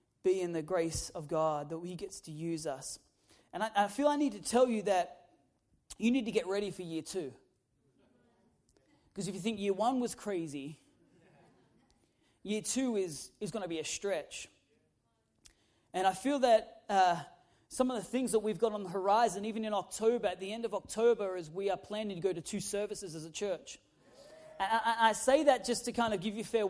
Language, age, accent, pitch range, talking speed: English, 30-49, Australian, 185-225 Hz, 210 wpm